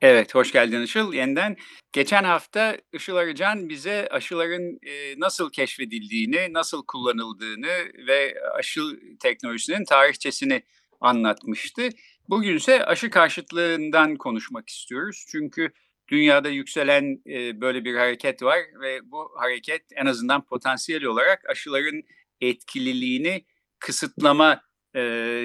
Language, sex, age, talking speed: Turkish, male, 50-69, 110 wpm